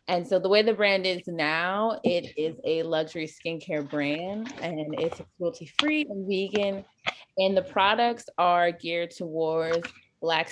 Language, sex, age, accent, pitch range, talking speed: English, female, 20-39, American, 170-220 Hz, 150 wpm